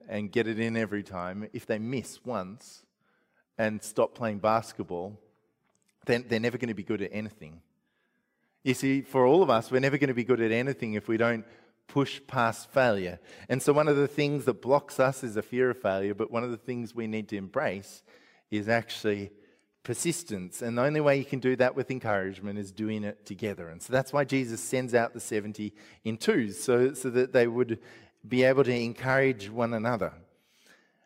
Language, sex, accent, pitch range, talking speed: English, male, Australian, 110-130 Hz, 205 wpm